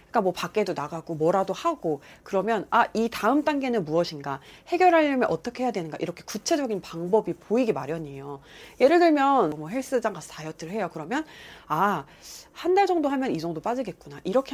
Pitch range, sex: 165-270 Hz, female